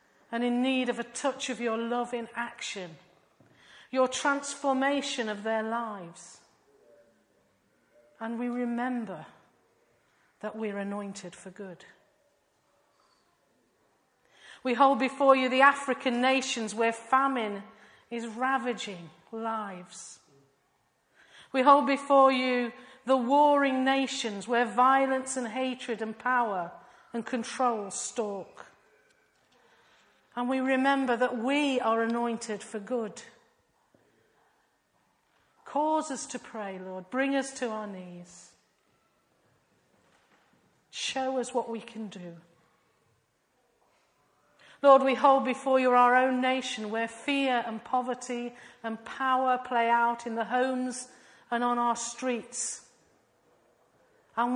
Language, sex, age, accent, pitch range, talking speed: English, female, 40-59, British, 225-260 Hz, 110 wpm